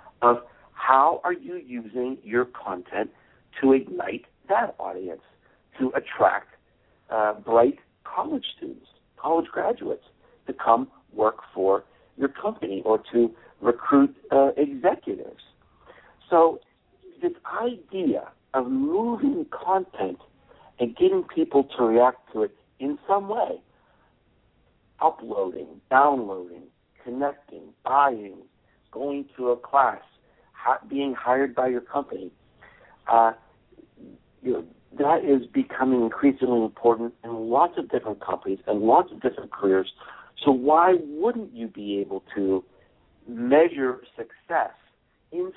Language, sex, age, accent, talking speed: English, male, 60-79, American, 110 wpm